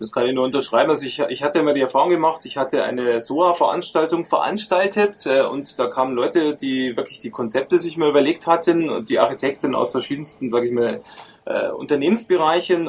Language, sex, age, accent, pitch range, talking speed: German, male, 20-39, German, 140-185 Hz, 180 wpm